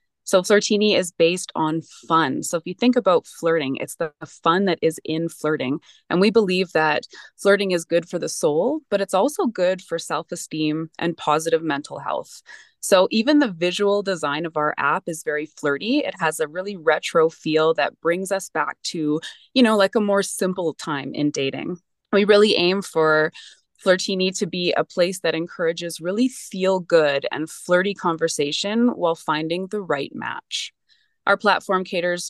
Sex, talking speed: female, 175 wpm